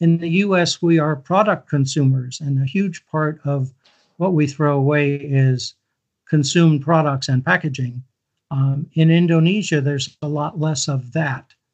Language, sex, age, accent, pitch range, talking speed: English, male, 60-79, American, 135-160 Hz, 155 wpm